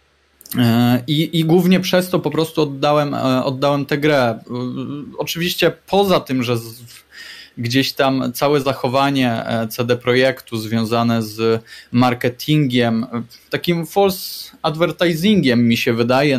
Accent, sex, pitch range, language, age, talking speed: native, male, 120-145 Hz, Polish, 20-39, 110 wpm